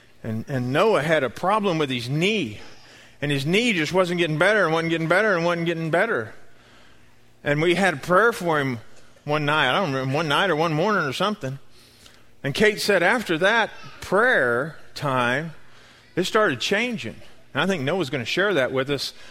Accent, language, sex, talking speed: American, English, male, 195 wpm